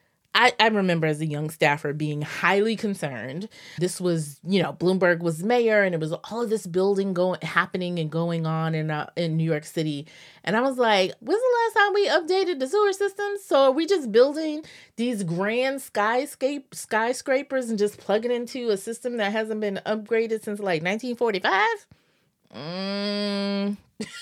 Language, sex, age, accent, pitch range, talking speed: English, female, 30-49, American, 165-235 Hz, 175 wpm